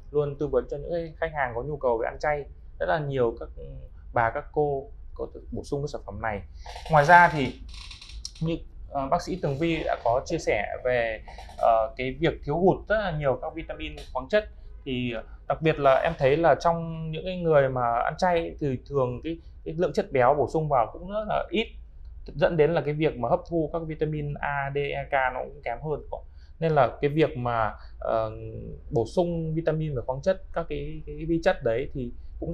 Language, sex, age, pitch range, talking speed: Vietnamese, male, 20-39, 115-160 Hz, 220 wpm